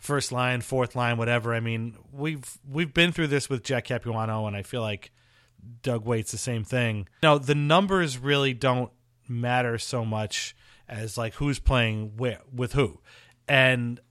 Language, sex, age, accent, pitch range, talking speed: English, male, 30-49, American, 115-140 Hz, 170 wpm